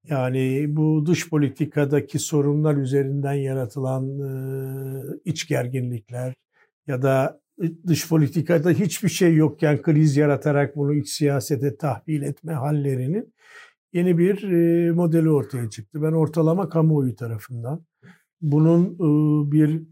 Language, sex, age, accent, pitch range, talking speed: Turkish, male, 60-79, native, 135-160 Hz, 105 wpm